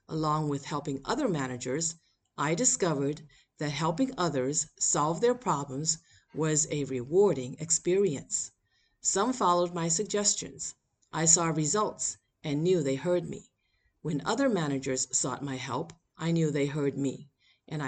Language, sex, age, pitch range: English, female, 50-69, 130-170 Hz